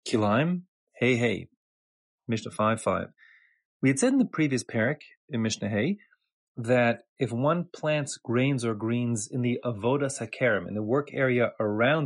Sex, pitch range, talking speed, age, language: male, 105-135 Hz, 160 wpm, 30-49, English